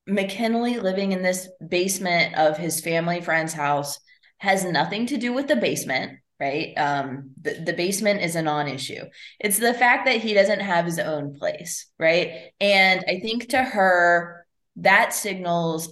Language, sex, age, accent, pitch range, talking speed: English, female, 20-39, American, 165-215 Hz, 160 wpm